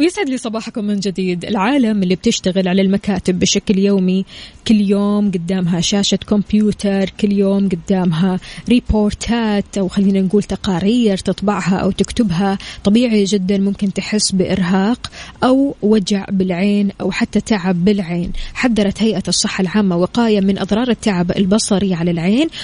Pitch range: 190-220 Hz